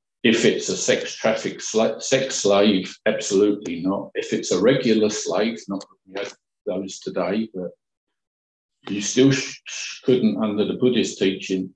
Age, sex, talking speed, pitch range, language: 50-69, male, 120 wpm, 90-110 Hz, English